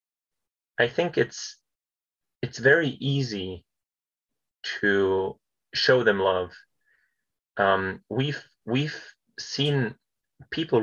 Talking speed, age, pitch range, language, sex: 85 wpm, 30-49, 100-135 Hz, English, male